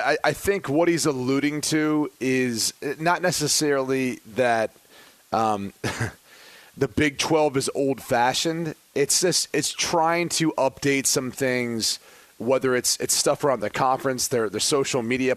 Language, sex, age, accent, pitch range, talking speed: English, male, 30-49, American, 125-150 Hz, 140 wpm